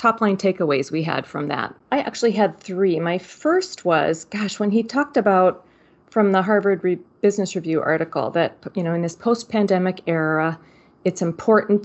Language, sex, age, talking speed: English, female, 40-59, 180 wpm